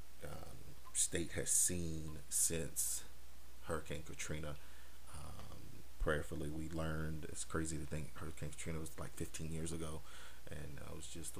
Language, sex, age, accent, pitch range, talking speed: English, male, 30-49, American, 65-85 Hz, 140 wpm